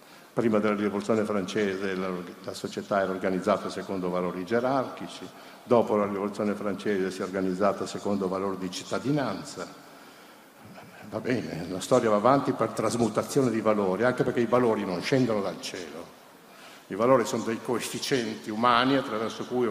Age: 60-79